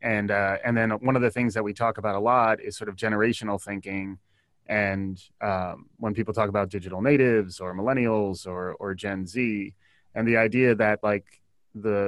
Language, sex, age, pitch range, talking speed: English, male, 30-49, 105-130 Hz, 195 wpm